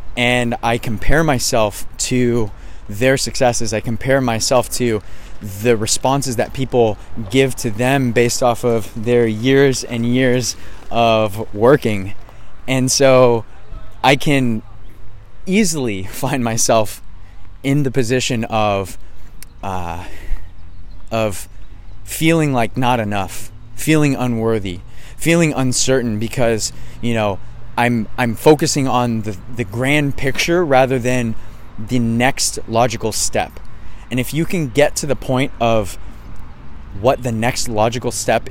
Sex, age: male, 20-39